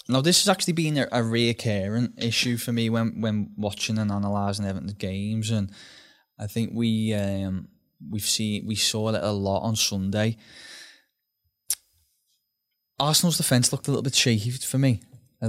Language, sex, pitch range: English, male, 105-120 Hz